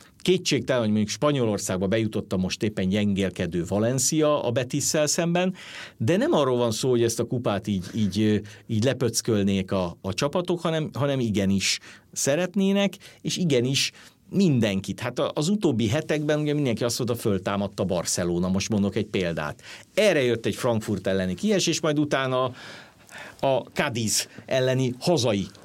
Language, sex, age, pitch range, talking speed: Hungarian, male, 50-69, 100-145 Hz, 155 wpm